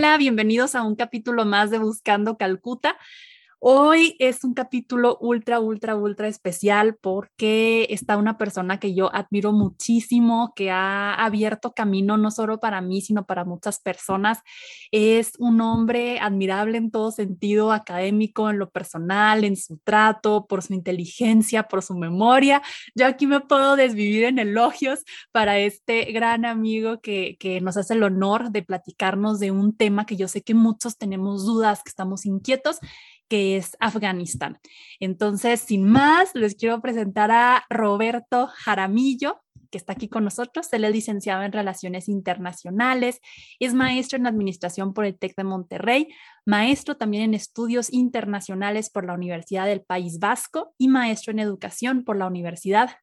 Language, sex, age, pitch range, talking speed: Spanish, female, 20-39, 200-240 Hz, 155 wpm